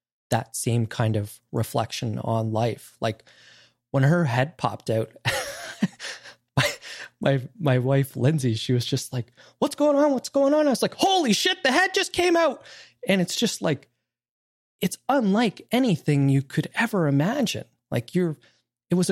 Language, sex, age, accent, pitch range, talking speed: English, male, 20-39, American, 120-155 Hz, 165 wpm